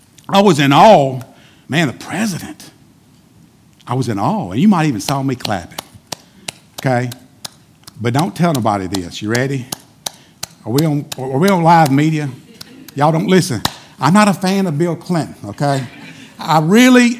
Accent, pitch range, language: American, 145-200 Hz, English